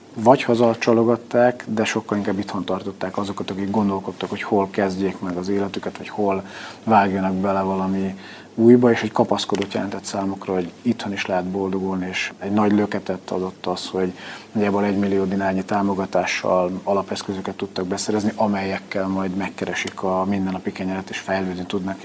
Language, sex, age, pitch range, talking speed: Hungarian, male, 30-49, 95-110 Hz, 150 wpm